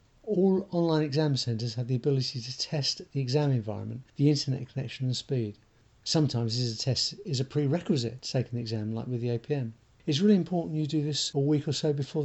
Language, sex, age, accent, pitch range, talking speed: English, male, 50-69, British, 125-155 Hz, 205 wpm